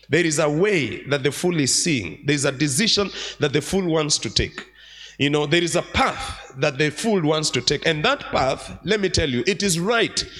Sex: male